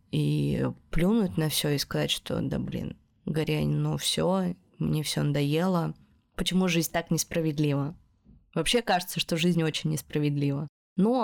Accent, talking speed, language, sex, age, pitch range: native, 140 wpm, Russian, female, 20-39, 170-205 Hz